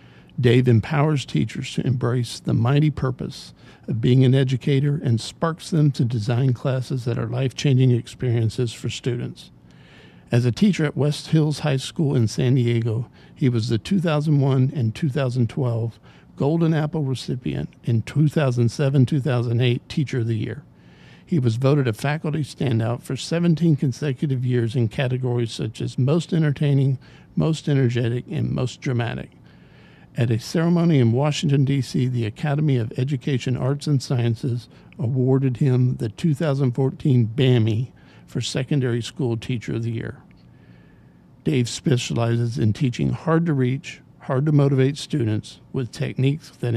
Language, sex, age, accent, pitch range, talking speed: English, male, 60-79, American, 120-145 Hz, 135 wpm